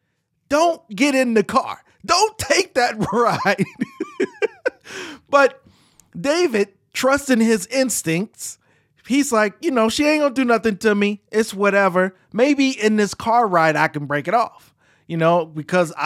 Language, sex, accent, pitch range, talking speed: English, male, American, 150-225 Hz, 155 wpm